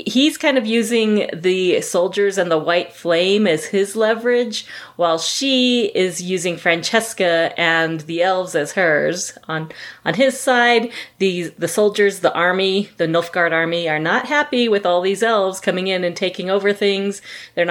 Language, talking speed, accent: English, 165 wpm, American